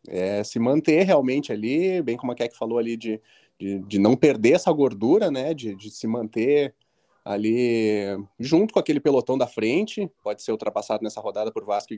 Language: Portuguese